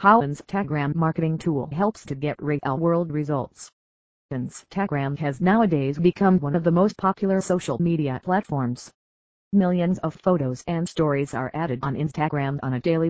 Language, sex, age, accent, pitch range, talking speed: English, female, 40-59, American, 140-180 Hz, 155 wpm